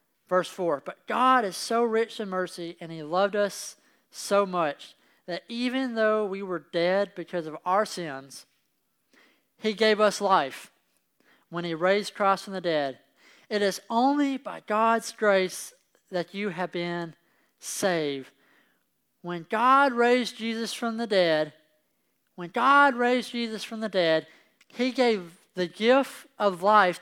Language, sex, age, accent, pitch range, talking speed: English, male, 40-59, American, 180-230 Hz, 150 wpm